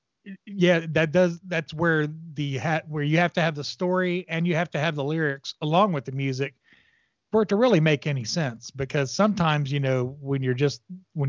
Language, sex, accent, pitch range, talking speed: English, male, American, 135-165 Hz, 215 wpm